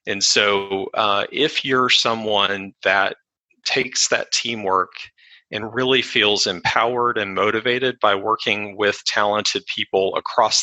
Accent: American